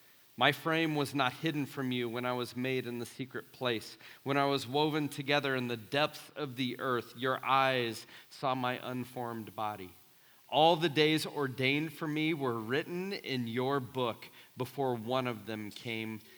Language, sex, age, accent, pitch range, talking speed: English, male, 40-59, American, 115-140 Hz, 175 wpm